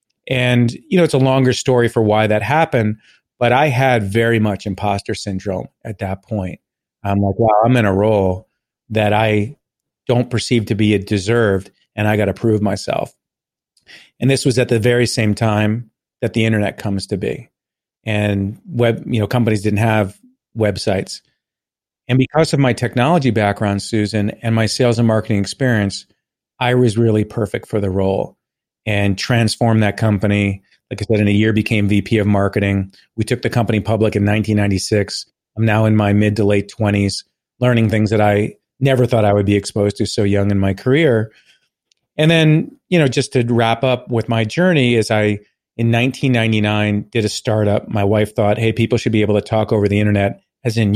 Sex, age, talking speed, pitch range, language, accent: male, 40-59, 190 wpm, 105-120 Hz, English, American